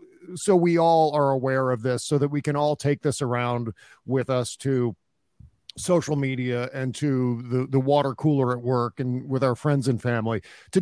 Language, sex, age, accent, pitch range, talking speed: English, male, 50-69, American, 125-165 Hz, 195 wpm